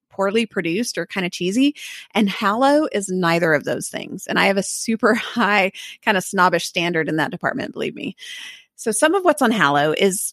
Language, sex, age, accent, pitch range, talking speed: English, female, 30-49, American, 180-230 Hz, 205 wpm